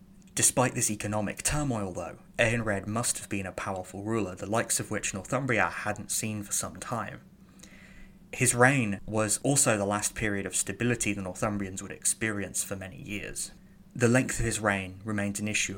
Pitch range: 100-115 Hz